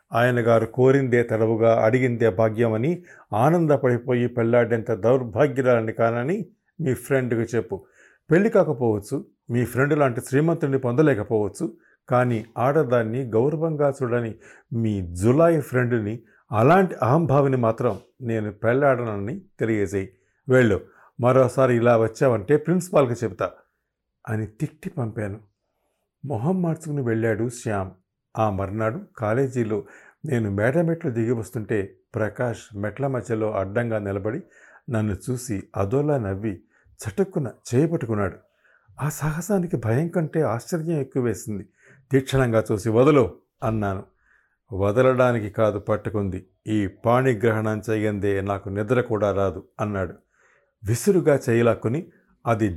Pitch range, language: 110-140 Hz, Telugu